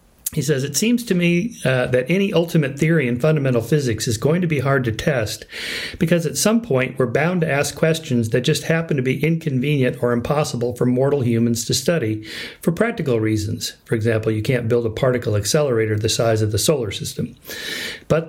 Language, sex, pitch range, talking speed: English, male, 120-160 Hz, 200 wpm